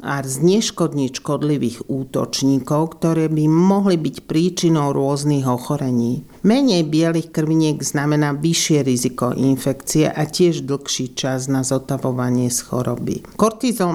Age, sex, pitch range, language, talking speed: 50-69, male, 140-170 Hz, Slovak, 115 wpm